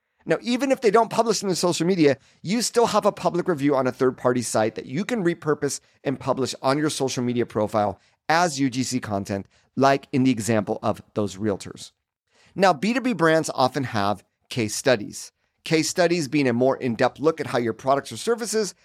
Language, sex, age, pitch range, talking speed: English, male, 40-59, 115-165 Hz, 195 wpm